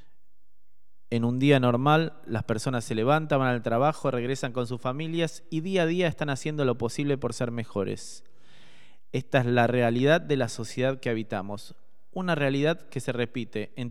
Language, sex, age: Spanish, male, 20-39